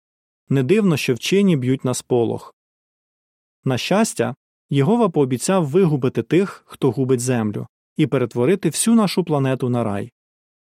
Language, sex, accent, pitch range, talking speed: Ukrainian, male, native, 125-180 Hz, 130 wpm